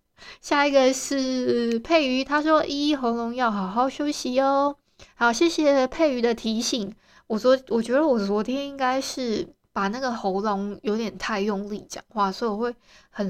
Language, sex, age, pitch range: Chinese, female, 20-39, 215-270 Hz